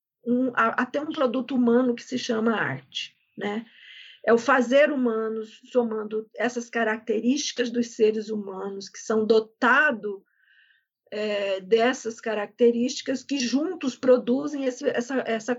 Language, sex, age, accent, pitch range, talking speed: Portuguese, female, 50-69, Brazilian, 225-265 Hz, 110 wpm